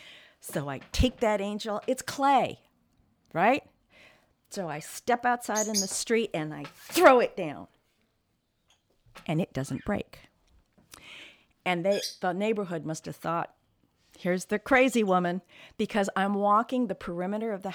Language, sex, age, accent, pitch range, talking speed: English, female, 50-69, American, 180-245 Hz, 140 wpm